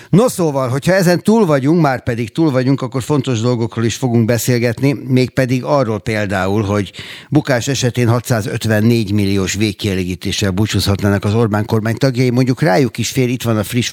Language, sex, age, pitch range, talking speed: Hungarian, male, 60-79, 100-125 Hz, 170 wpm